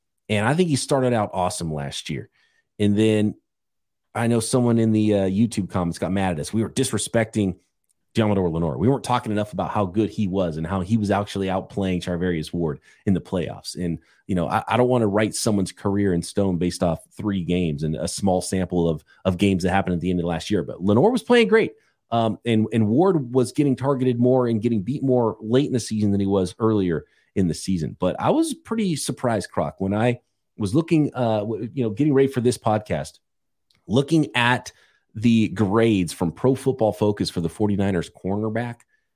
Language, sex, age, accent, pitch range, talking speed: English, male, 30-49, American, 90-125 Hz, 210 wpm